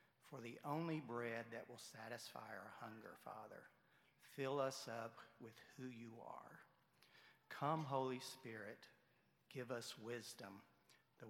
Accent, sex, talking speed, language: American, male, 125 wpm, English